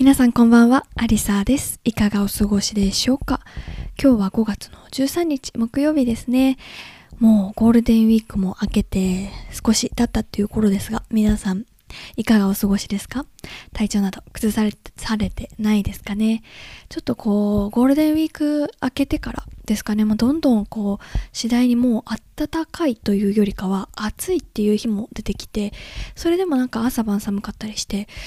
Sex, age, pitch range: female, 20-39, 200-250 Hz